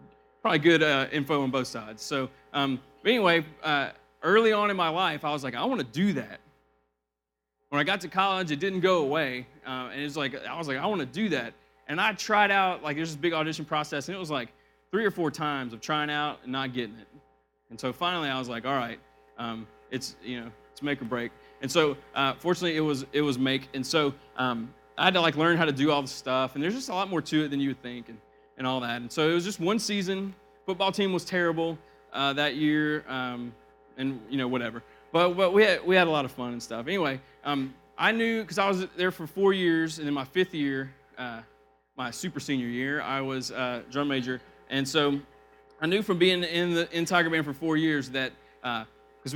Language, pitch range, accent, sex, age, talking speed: English, 125-170 Hz, American, male, 30-49, 240 wpm